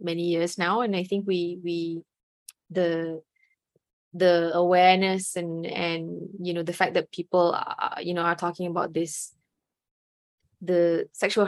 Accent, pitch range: Malaysian, 165-185 Hz